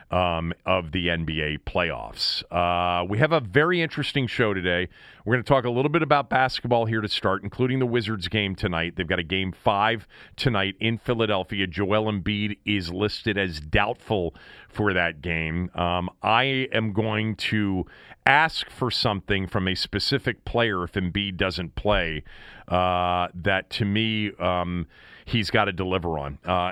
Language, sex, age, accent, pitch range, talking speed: English, male, 40-59, American, 90-120 Hz, 165 wpm